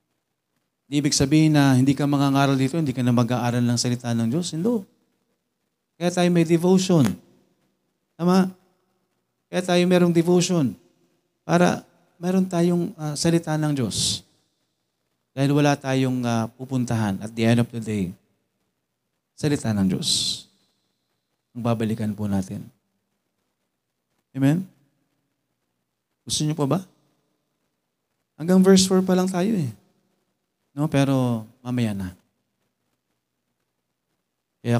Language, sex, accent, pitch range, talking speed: Filipino, male, native, 115-155 Hz, 115 wpm